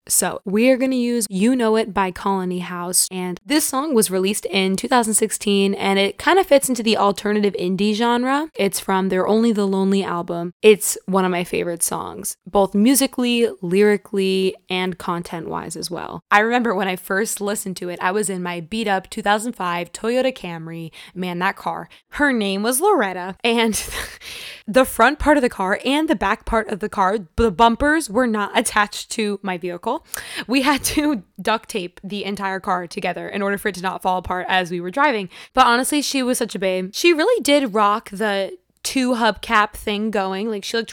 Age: 20-39